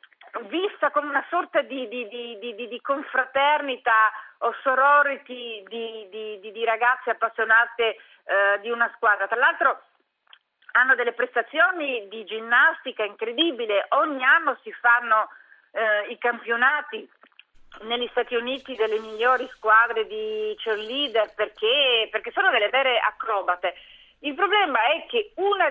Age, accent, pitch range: 40-59, native, 220-300 Hz